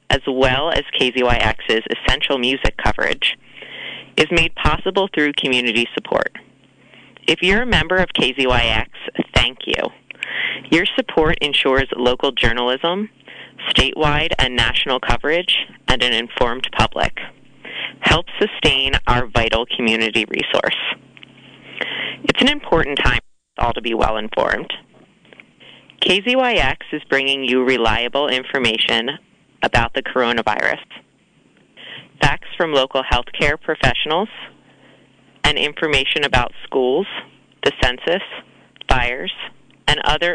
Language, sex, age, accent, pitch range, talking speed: English, female, 30-49, American, 125-170 Hz, 110 wpm